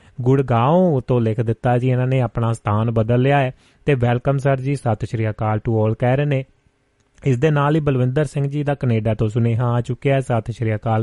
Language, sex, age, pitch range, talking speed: Punjabi, male, 30-49, 115-140 Hz, 230 wpm